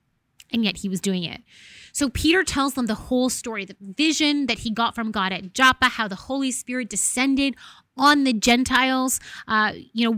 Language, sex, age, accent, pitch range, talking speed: English, female, 20-39, American, 210-260 Hz, 195 wpm